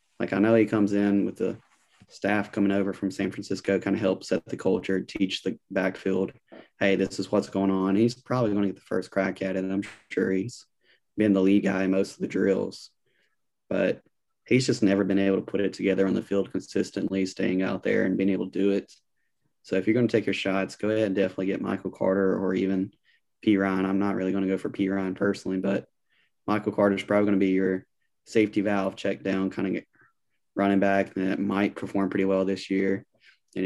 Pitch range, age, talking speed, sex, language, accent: 95-105 Hz, 20-39, 230 wpm, male, English, American